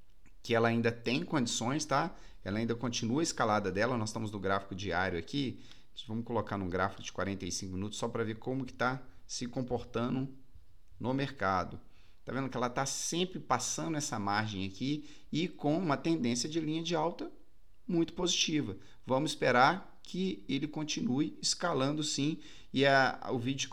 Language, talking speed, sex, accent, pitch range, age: Portuguese, 165 wpm, male, Brazilian, 115-145 Hz, 40-59